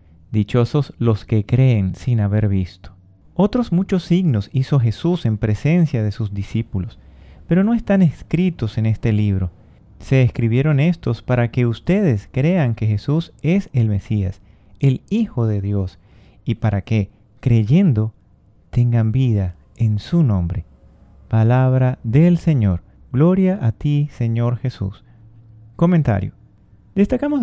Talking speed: 130 wpm